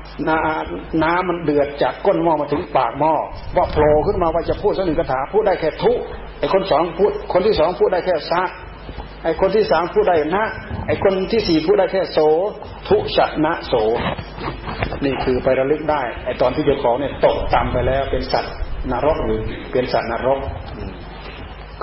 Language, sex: Thai, male